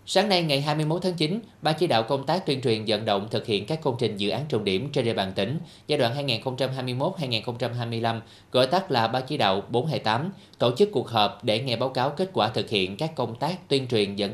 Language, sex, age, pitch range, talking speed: Vietnamese, male, 20-39, 110-145 Hz, 235 wpm